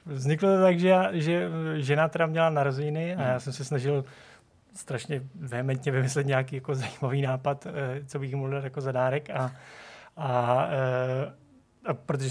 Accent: native